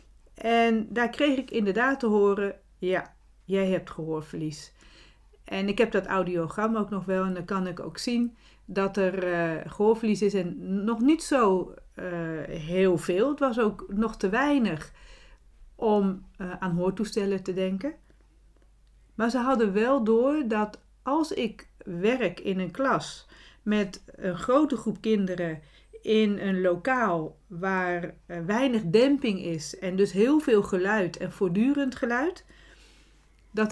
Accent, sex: Dutch, female